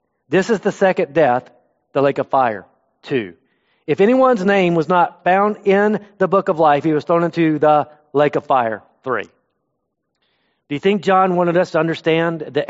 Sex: male